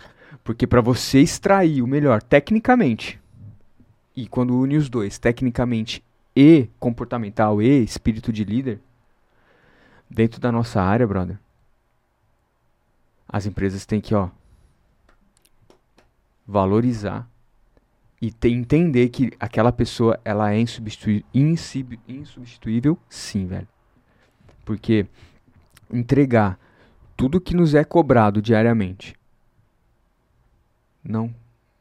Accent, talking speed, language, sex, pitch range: Brazilian, 90 wpm, Portuguese, male, 110-130 Hz